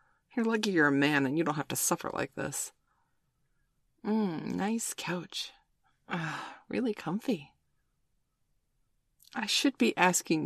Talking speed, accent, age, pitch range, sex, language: 130 wpm, American, 30-49, 155-210 Hz, female, English